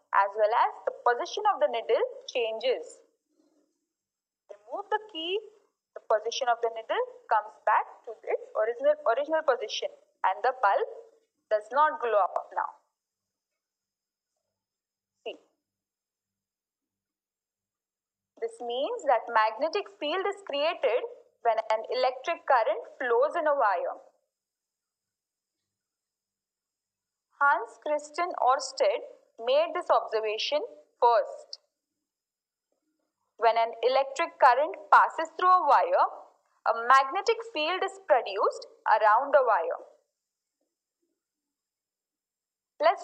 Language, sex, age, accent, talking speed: Marathi, female, 20-39, native, 100 wpm